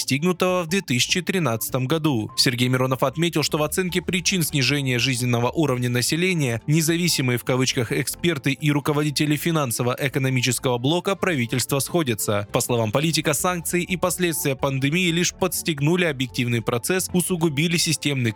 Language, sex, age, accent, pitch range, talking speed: Russian, male, 20-39, native, 125-175 Hz, 125 wpm